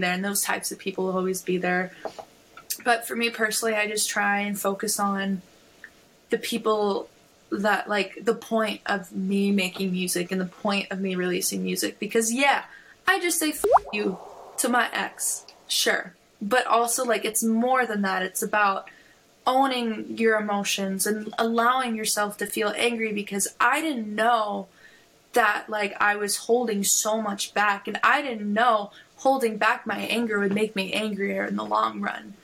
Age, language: 20-39, English